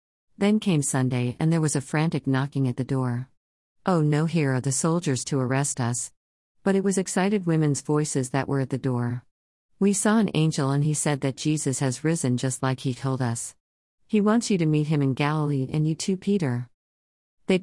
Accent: American